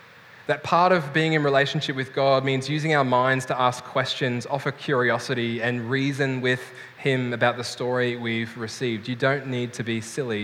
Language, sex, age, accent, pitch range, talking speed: English, male, 10-29, Australian, 125-155 Hz, 185 wpm